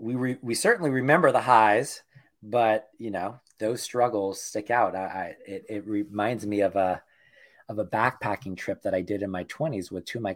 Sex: male